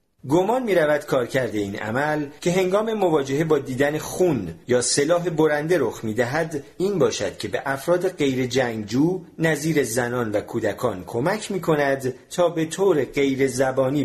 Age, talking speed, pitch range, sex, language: 40-59, 140 wpm, 115-165 Hz, male, Persian